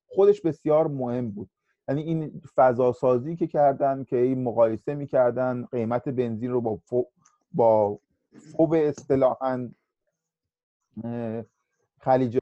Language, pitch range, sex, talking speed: Persian, 115-165 Hz, male, 110 wpm